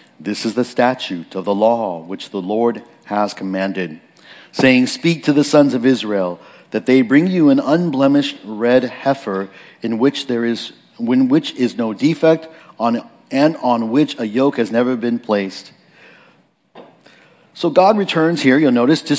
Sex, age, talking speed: male, 50-69, 165 wpm